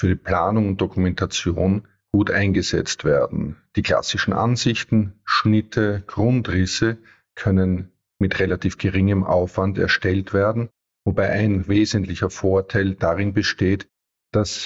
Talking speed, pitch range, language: 110 wpm, 95-105 Hz, English